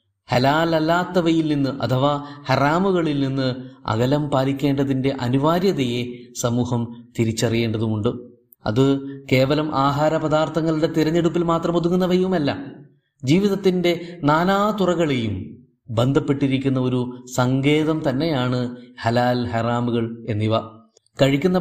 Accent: native